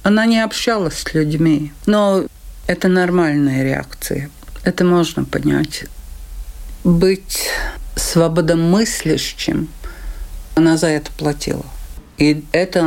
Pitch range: 150-180 Hz